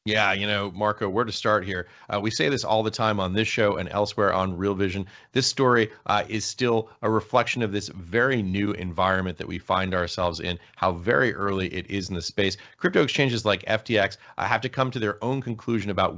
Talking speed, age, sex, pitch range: 225 wpm, 30-49, male, 95-110 Hz